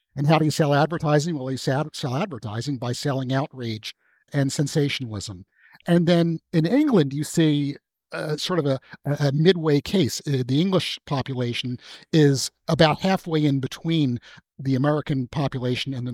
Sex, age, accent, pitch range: male, 50-69, American, 125-155 Hz